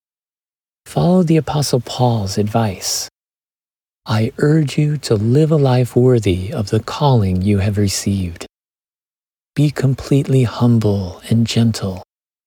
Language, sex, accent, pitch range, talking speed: English, male, American, 105-135 Hz, 115 wpm